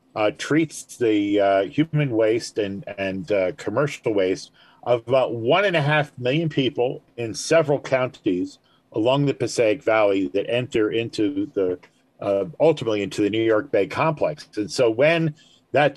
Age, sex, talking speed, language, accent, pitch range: 50-69, male, 160 wpm, English, American, 105-145 Hz